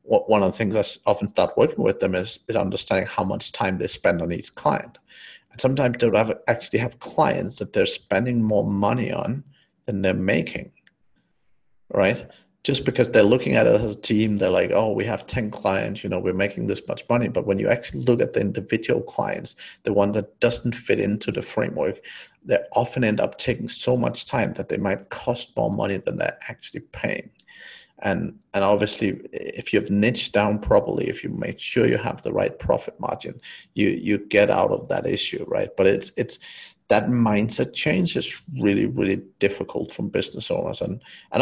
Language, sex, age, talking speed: English, male, 50-69, 200 wpm